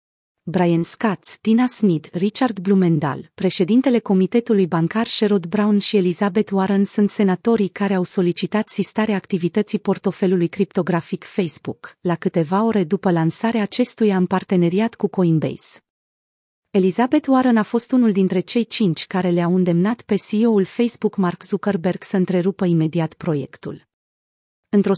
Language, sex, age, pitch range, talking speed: Romanian, female, 30-49, 180-220 Hz, 130 wpm